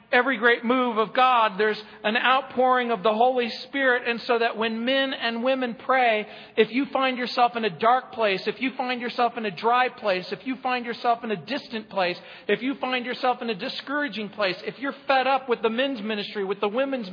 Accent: American